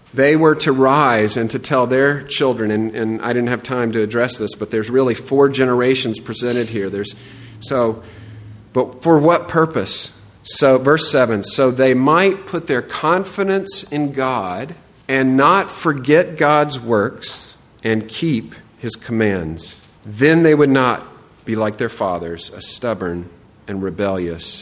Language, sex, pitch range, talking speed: English, male, 115-150 Hz, 155 wpm